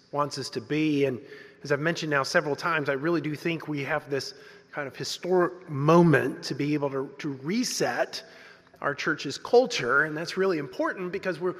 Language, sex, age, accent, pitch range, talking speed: English, male, 30-49, American, 155-205 Hz, 185 wpm